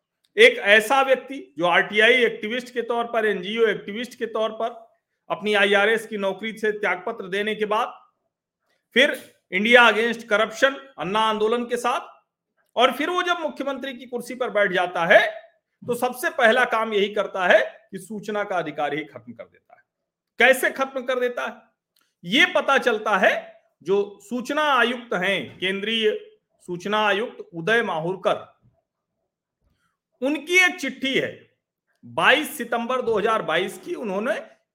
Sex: male